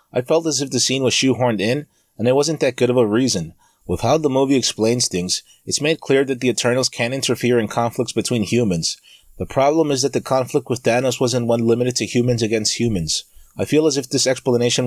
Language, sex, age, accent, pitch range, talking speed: English, male, 30-49, American, 115-135 Hz, 225 wpm